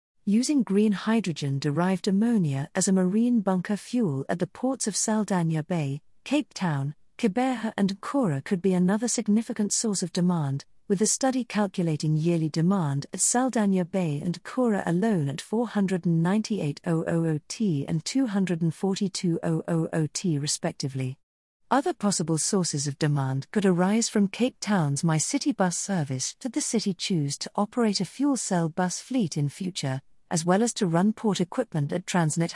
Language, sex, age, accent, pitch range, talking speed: English, female, 50-69, British, 160-215 Hz, 155 wpm